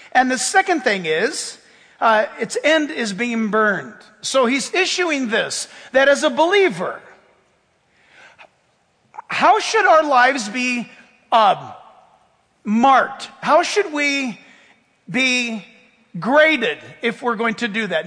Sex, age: male, 50-69